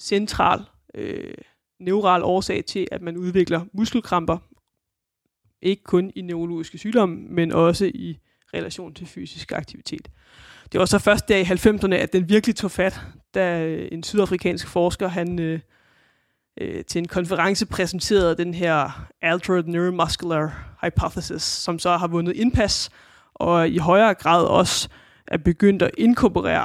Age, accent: 20-39, native